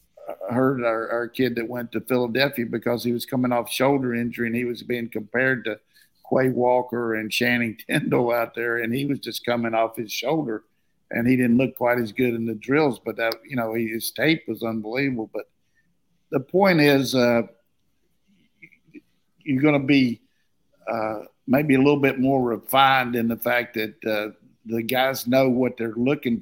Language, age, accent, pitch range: English, 50-69, American, 115-125 Hz